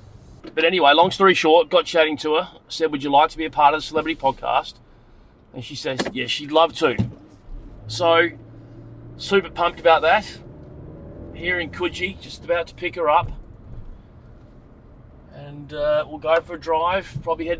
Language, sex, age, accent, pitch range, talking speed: English, male, 30-49, Australian, 130-160 Hz, 175 wpm